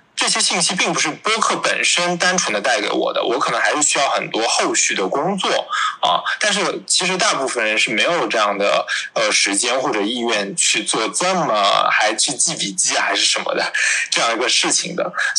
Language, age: Chinese, 20-39